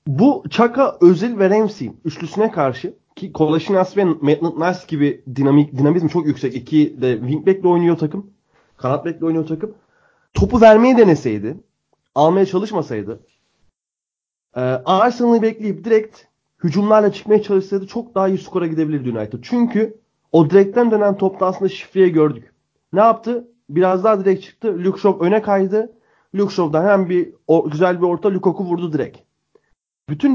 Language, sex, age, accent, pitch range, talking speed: Turkish, male, 30-49, native, 145-210 Hz, 140 wpm